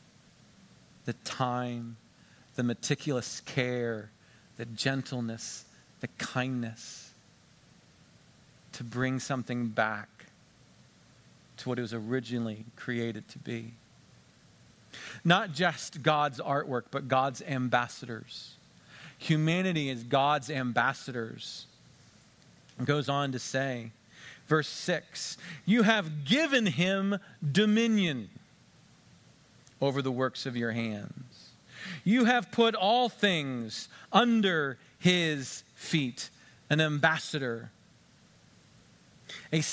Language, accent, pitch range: English, American, 120-175 Hz